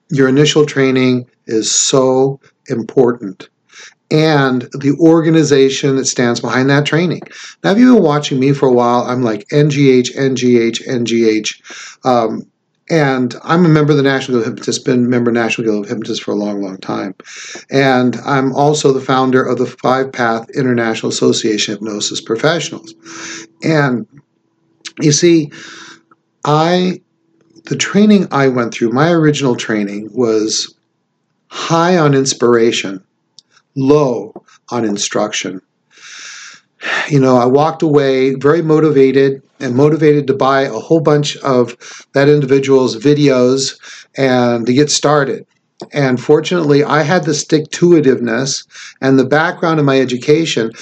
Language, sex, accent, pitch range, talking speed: English, male, American, 120-150 Hz, 140 wpm